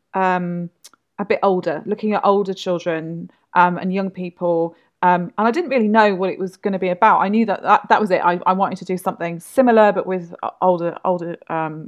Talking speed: 220 wpm